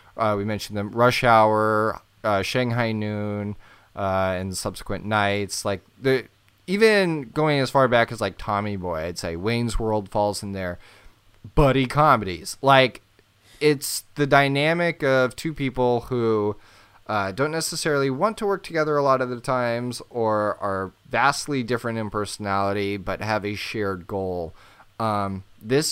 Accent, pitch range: American, 100-135 Hz